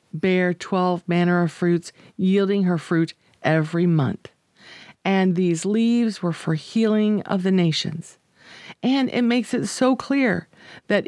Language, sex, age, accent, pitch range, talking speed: English, female, 50-69, American, 180-240 Hz, 140 wpm